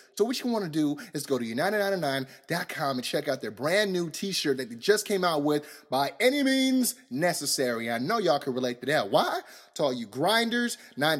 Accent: American